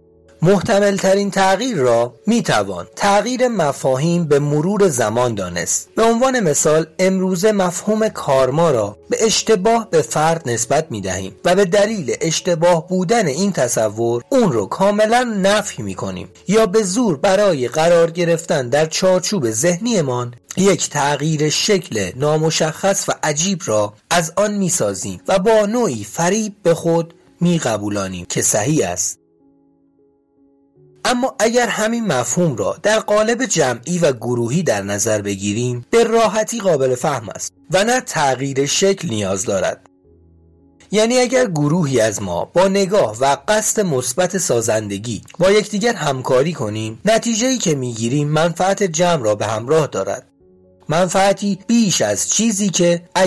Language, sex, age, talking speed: Persian, male, 40-59, 135 wpm